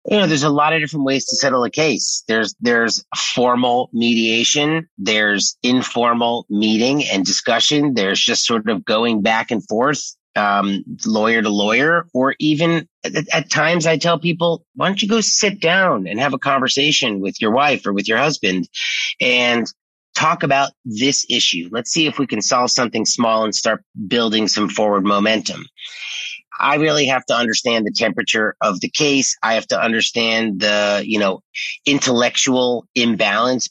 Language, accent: English, American